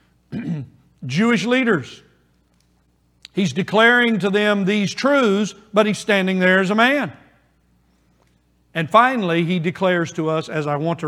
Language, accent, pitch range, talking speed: English, American, 150-185 Hz, 135 wpm